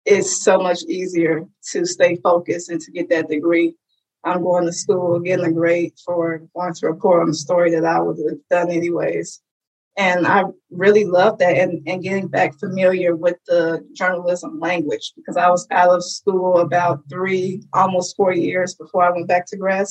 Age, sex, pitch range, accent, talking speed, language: 20-39, female, 170-195 Hz, American, 190 wpm, English